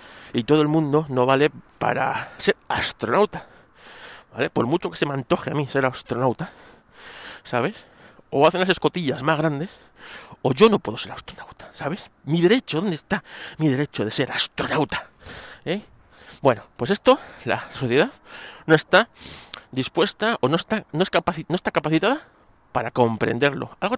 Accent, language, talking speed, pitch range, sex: Spanish, Spanish, 150 wpm, 125-170 Hz, male